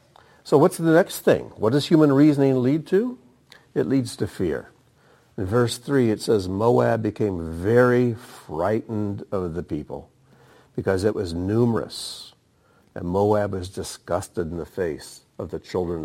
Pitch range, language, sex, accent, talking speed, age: 95-125 Hz, English, male, American, 155 wpm, 60-79